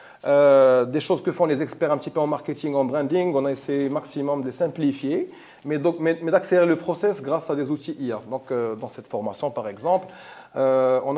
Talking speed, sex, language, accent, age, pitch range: 215 wpm, male, French, French, 30-49, 135-170 Hz